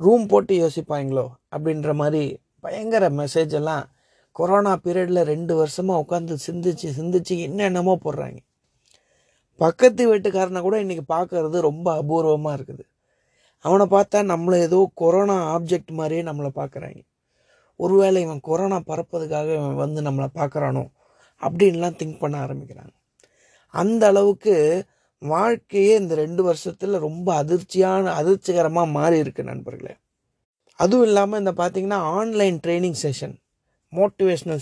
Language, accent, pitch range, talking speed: Tamil, native, 155-195 Hz, 115 wpm